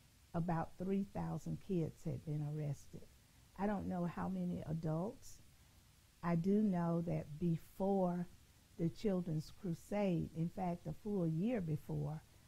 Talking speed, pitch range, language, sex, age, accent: 125 wpm, 155-185 Hz, English, female, 50-69, American